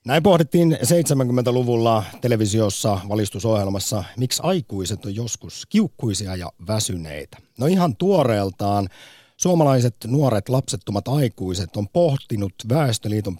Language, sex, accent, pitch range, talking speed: Finnish, male, native, 100-140 Hz, 100 wpm